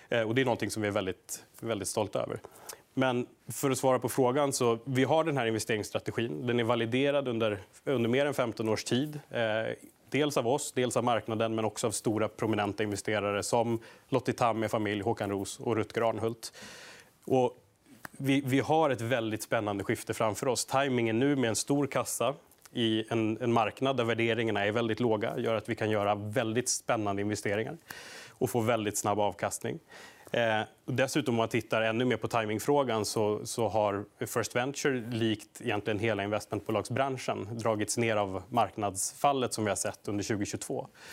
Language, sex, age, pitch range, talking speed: Swedish, male, 30-49, 105-125 Hz, 175 wpm